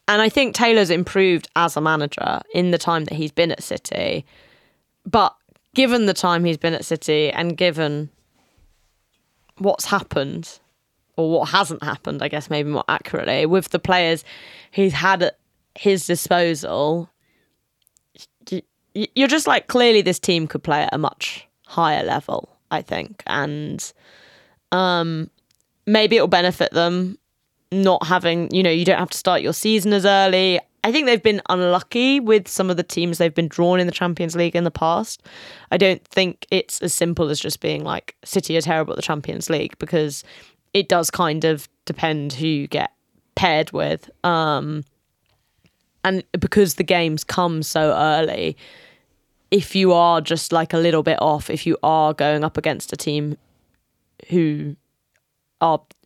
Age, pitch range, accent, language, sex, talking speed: 10-29, 155-185 Hz, British, English, female, 165 wpm